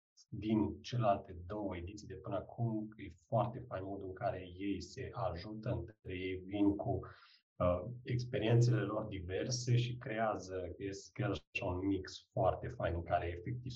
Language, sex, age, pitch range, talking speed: Romanian, male, 30-49, 95-125 Hz, 150 wpm